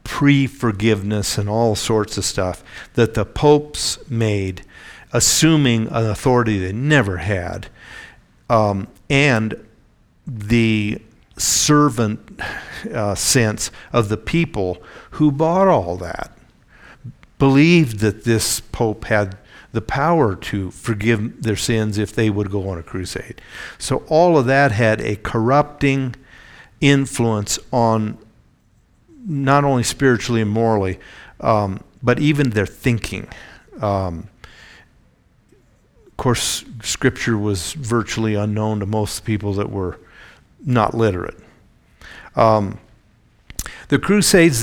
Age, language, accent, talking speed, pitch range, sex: 50-69, English, American, 110 wpm, 105-135 Hz, male